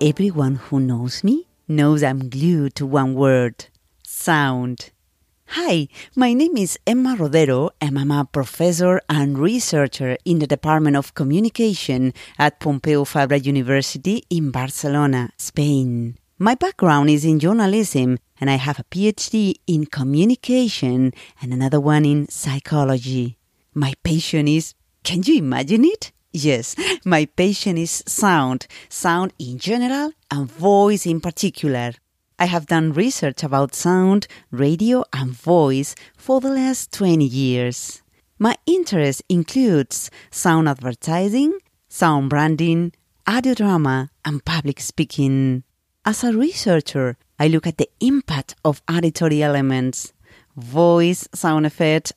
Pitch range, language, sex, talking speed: 135-180 Hz, English, female, 130 wpm